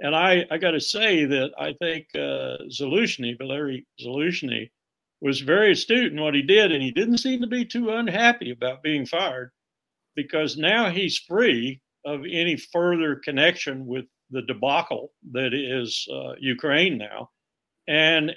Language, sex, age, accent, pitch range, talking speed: English, male, 60-79, American, 125-165 Hz, 155 wpm